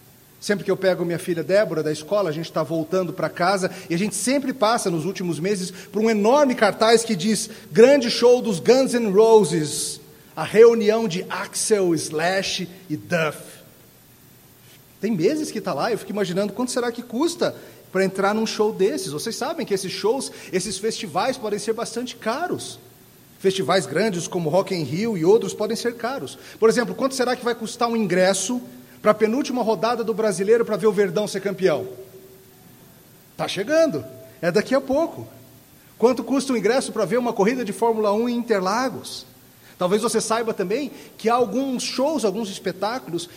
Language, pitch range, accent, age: Portuguese, 190-235 Hz, Brazilian, 40-59